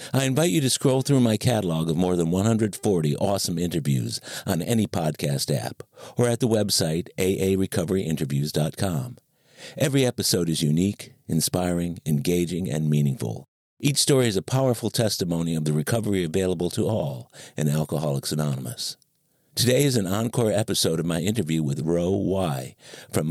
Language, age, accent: English, 50-69, American